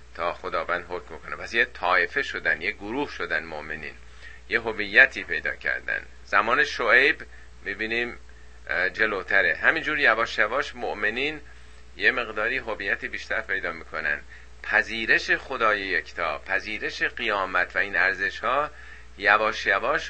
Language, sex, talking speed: Persian, male, 120 wpm